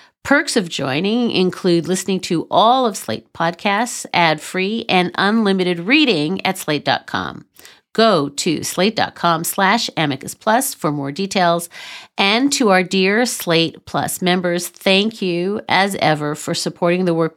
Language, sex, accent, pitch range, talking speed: English, female, American, 165-210 Hz, 135 wpm